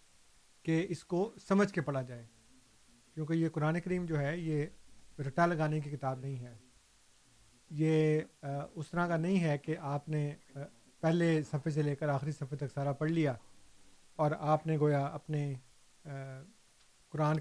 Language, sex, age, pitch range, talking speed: Urdu, male, 40-59, 140-165 Hz, 160 wpm